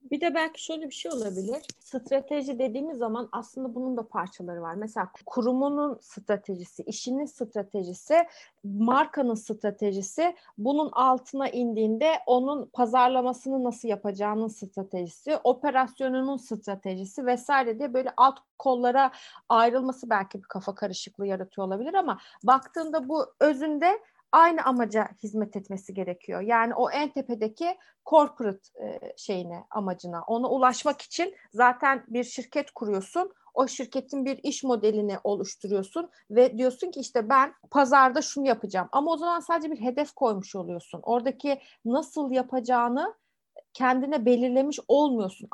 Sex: female